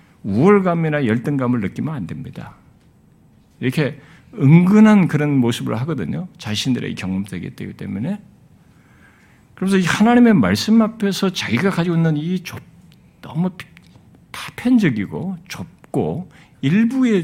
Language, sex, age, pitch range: Korean, male, 50-69, 120-180 Hz